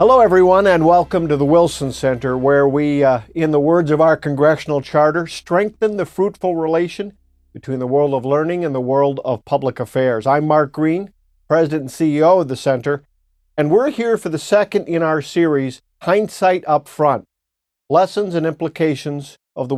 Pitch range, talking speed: 140-170 Hz, 180 wpm